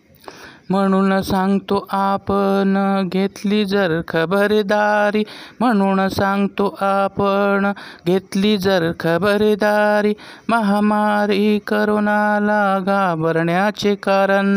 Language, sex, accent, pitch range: Marathi, male, native, 195-210 Hz